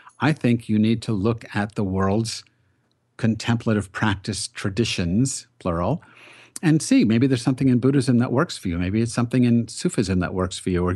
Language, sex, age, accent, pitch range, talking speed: English, male, 50-69, American, 100-125 Hz, 185 wpm